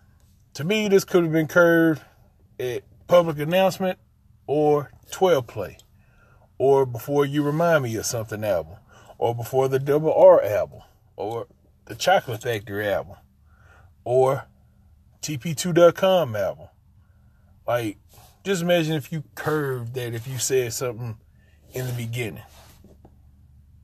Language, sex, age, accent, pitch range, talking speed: English, male, 20-39, American, 105-145 Hz, 125 wpm